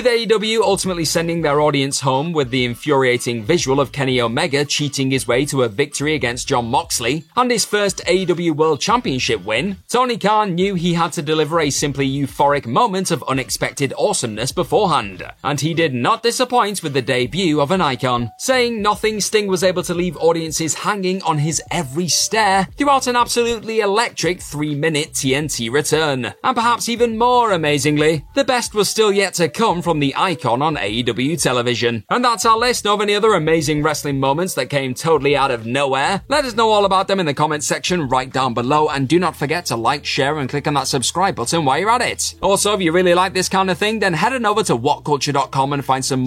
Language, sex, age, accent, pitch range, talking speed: English, male, 30-49, British, 140-200 Hz, 205 wpm